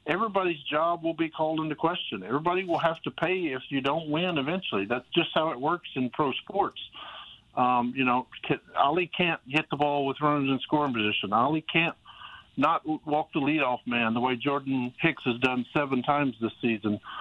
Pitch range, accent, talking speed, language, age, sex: 130-165 Hz, American, 190 wpm, English, 50-69, male